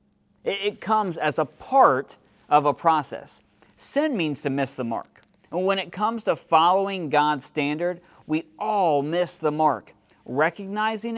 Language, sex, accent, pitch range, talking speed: English, male, American, 130-190 Hz, 150 wpm